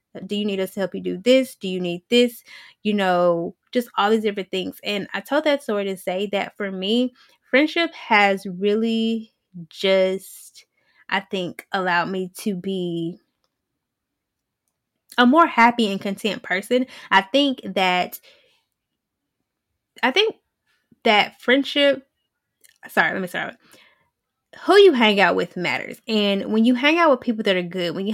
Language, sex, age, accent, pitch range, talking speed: English, female, 10-29, American, 185-235 Hz, 160 wpm